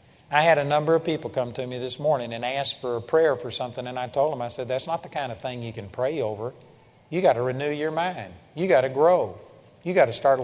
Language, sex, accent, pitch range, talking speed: English, male, American, 130-165 Hz, 275 wpm